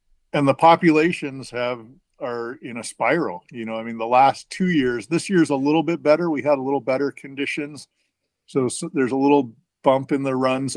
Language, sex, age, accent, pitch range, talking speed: English, male, 50-69, American, 110-140 Hz, 205 wpm